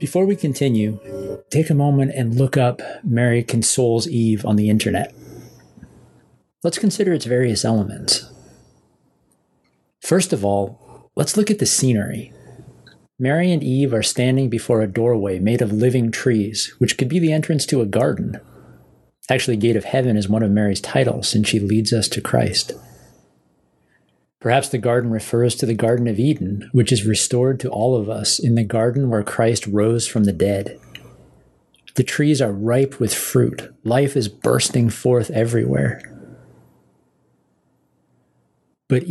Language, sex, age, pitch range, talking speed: English, male, 40-59, 105-135 Hz, 155 wpm